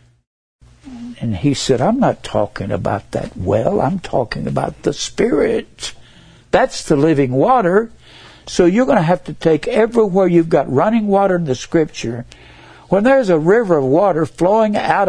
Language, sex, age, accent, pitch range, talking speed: English, male, 60-79, American, 115-170 Hz, 165 wpm